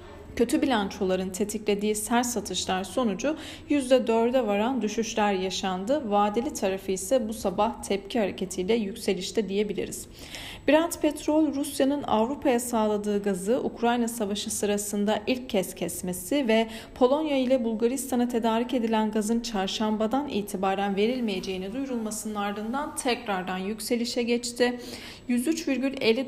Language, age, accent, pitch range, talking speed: Turkish, 40-59, native, 195-250 Hz, 105 wpm